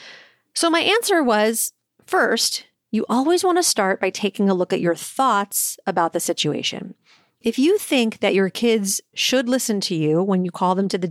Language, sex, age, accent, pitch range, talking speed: English, female, 40-59, American, 195-290 Hz, 190 wpm